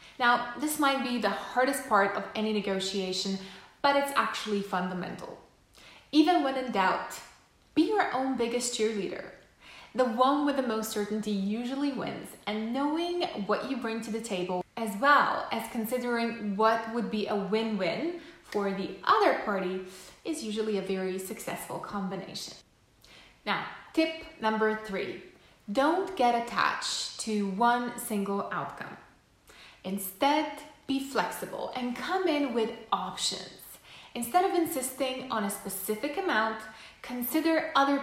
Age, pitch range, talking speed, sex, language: 20-39, 205-275 Hz, 135 wpm, female, English